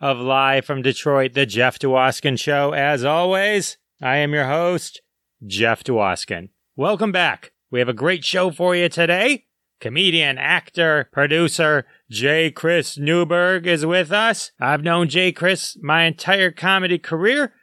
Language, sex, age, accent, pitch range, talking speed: English, male, 30-49, American, 150-180 Hz, 145 wpm